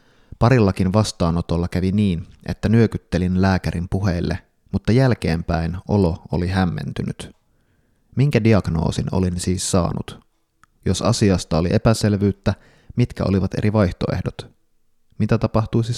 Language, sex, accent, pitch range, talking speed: Finnish, male, native, 90-110 Hz, 105 wpm